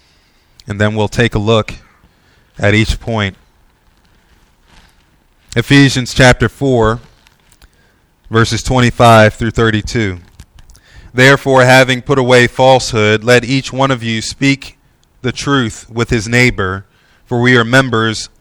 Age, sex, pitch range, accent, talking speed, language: 30-49, male, 105-135 Hz, American, 115 wpm, English